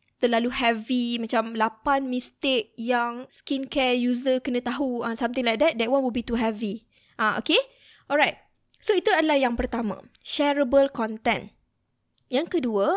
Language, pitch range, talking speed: Malay, 230-280 Hz, 150 wpm